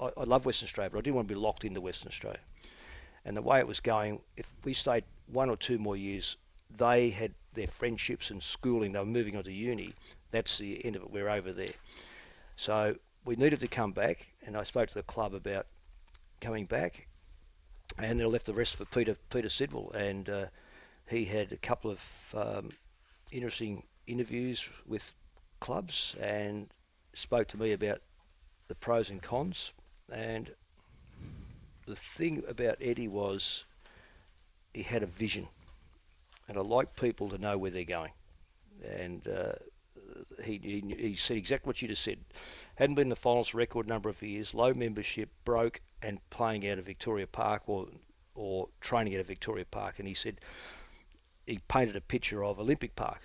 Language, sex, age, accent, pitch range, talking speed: English, male, 50-69, Australian, 90-115 Hz, 180 wpm